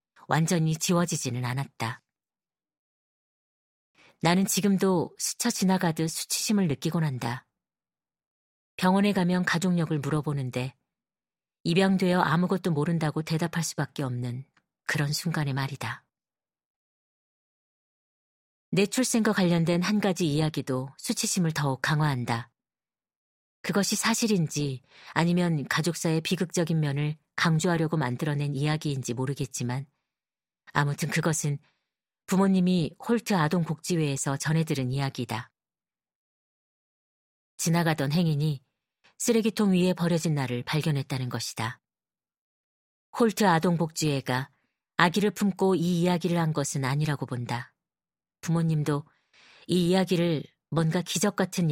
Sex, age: female, 40-59